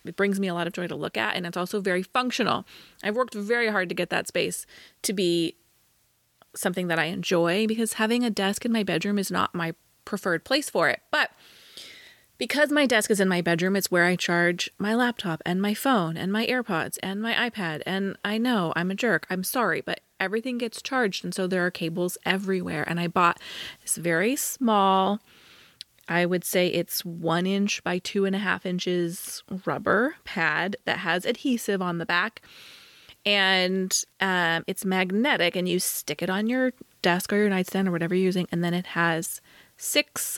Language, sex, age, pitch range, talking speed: English, female, 20-39, 175-210 Hz, 200 wpm